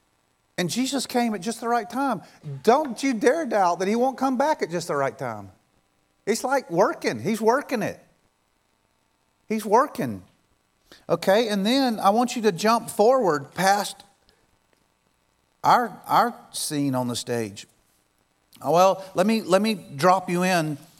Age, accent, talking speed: 40-59, American, 155 wpm